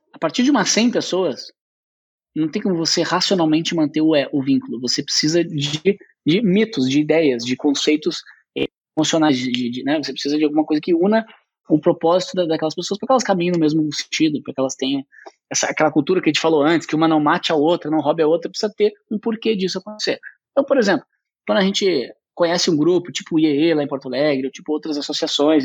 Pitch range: 150-225 Hz